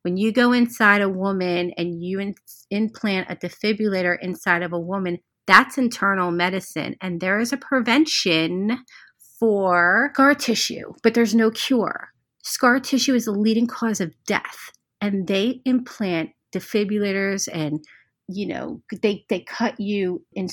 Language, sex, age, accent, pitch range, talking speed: English, female, 30-49, American, 180-225 Hz, 145 wpm